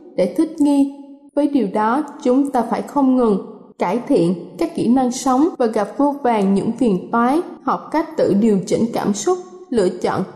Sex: female